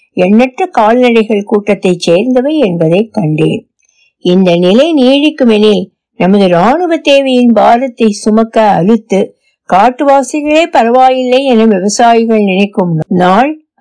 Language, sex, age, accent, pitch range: Tamil, female, 60-79, native, 195-275 Hz